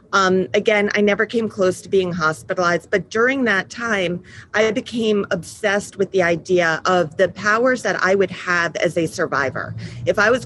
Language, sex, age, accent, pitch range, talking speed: English, female, 30-49, American, 170-205 Hz, 185 wpm